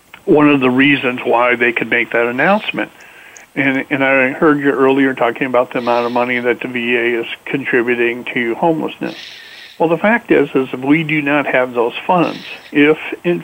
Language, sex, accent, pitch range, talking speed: English, male, American, 125-155 Hz, 190 wpm